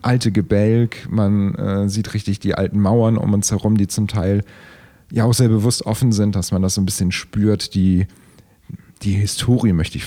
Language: German